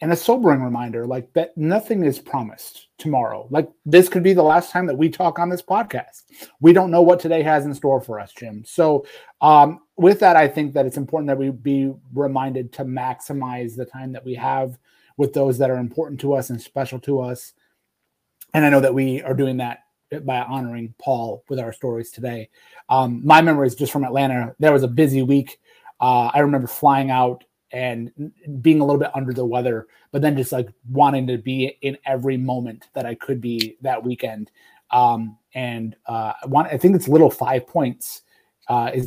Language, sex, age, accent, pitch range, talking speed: English, male, 30-49, American, 120-140 Hz, 205 wpm